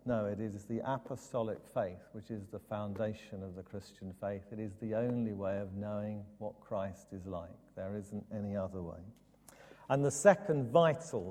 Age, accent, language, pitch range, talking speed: 50-69, British, English, 105-130 Hz, 180 wpm